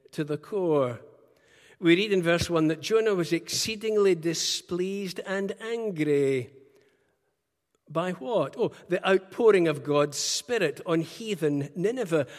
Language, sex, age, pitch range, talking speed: English, male, 60-79, 145-200 Hz, 125 wpm